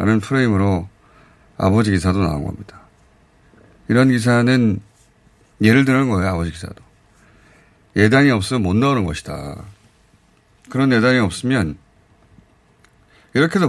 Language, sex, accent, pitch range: Korean, male, native, 95-130 Hz